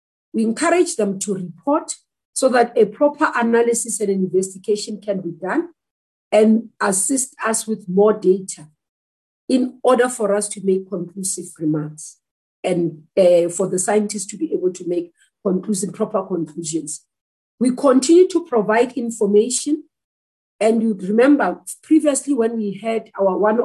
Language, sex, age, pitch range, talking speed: English, female, 50-69, 195-260 Hz, 140 wpm